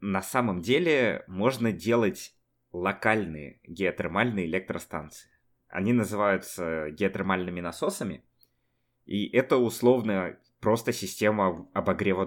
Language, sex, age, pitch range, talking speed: Russian, male, 20-39, 85-115 Hz, 90 wpm